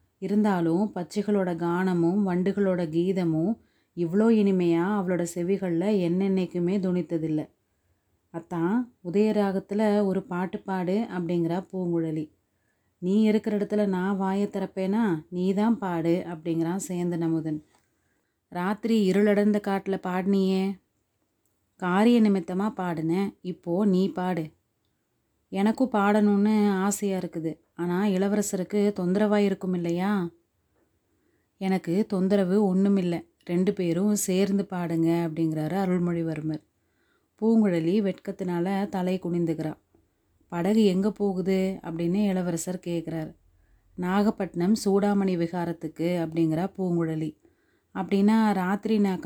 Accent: native